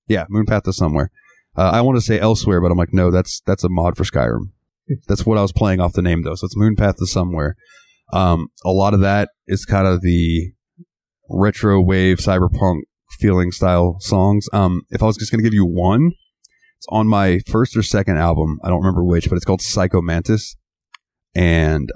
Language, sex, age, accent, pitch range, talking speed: English, male, 30-49, American, 90-110 Hz, 210 wpm